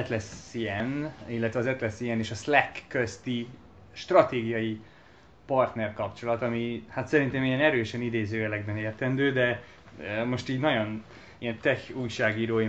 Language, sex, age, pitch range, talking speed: Hungarian, male, 20-39, 105-130 Hz, 120 wpm